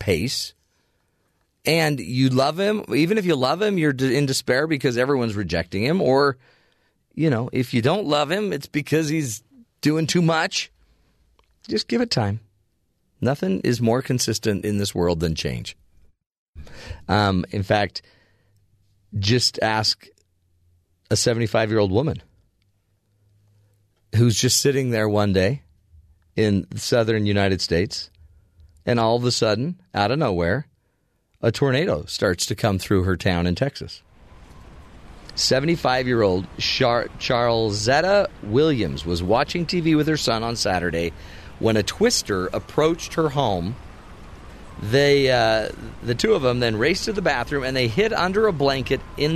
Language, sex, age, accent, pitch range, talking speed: English, male, 40-59, American, 95-135 Hz, 145 wpm